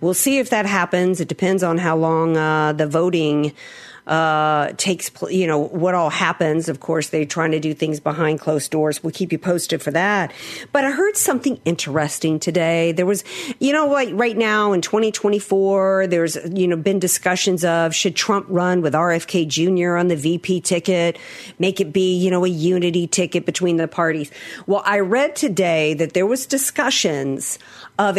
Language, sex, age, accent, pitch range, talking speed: English, female, 50-69, American, 165-205 Hz, 190 wpm